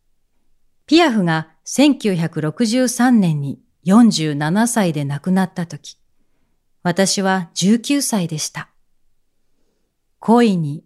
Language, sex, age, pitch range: Japanese, female, 40-59, 165-230 Hz